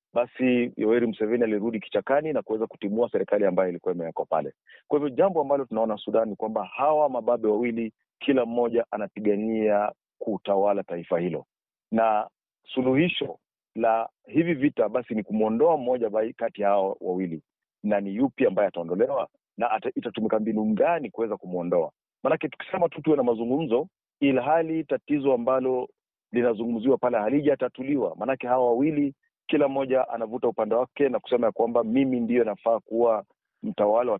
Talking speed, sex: 150 wpm, male